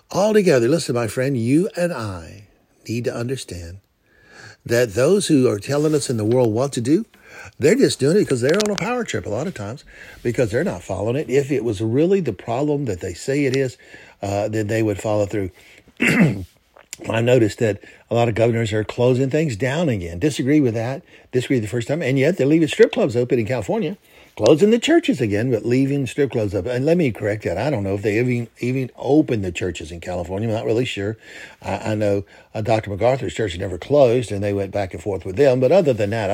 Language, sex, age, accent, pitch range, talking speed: English, male, 60-79, American, 100-130 Hz, 225 wpm